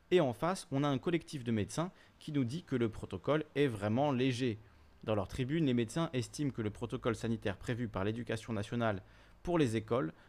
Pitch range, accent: 105-135 Hz, French